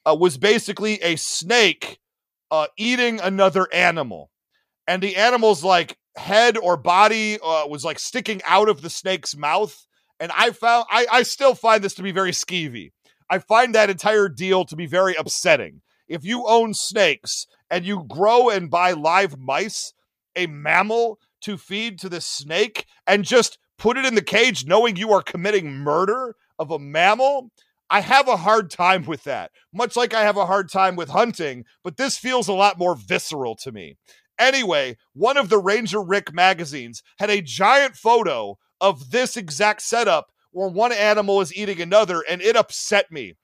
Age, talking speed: 40-59, 180 wpm